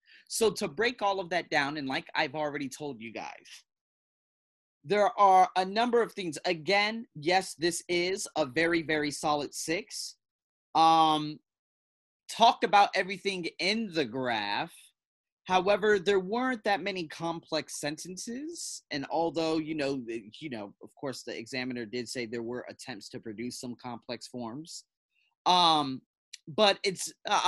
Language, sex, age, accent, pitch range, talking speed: English, male, 30-49, American, 130-195 Hz, 145 wpm